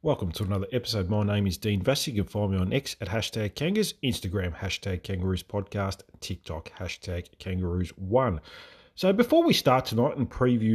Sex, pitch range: male, 100-130 Hz